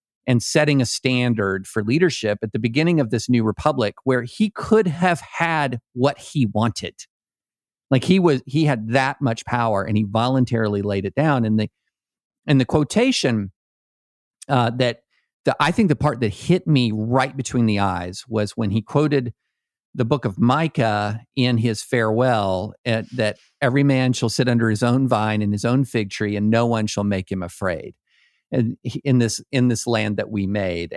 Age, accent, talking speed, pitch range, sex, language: 50-69, American, 185 wpm, 110-140 Hz, male, English